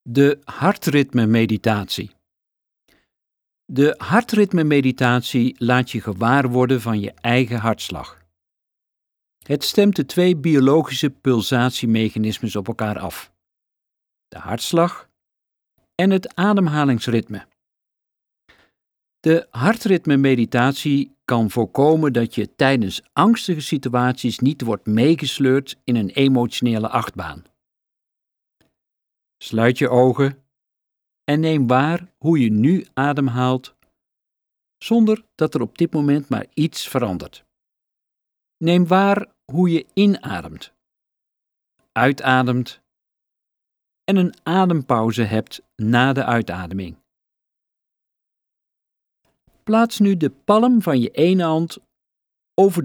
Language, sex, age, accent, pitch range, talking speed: Dutch, male, 50-69, Dutch, 115-165 Hz, 95 wpm